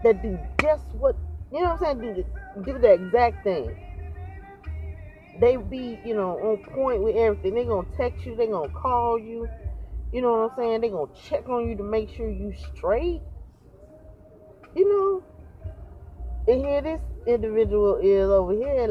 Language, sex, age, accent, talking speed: English, female, 30-49, American, 175 wpm